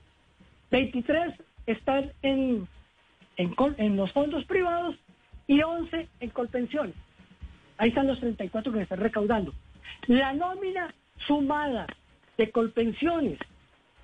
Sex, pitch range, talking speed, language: female, 225-285 Hz, 105 wpm, Spanish